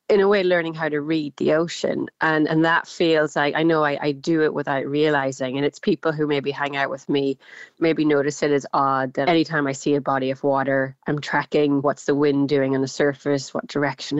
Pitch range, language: 145-170 Hz, English